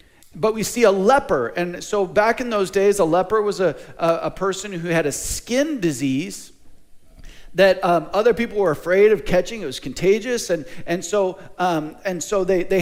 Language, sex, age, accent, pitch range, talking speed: English, male, 40-59, American, 165-220 Hz, 195 wpm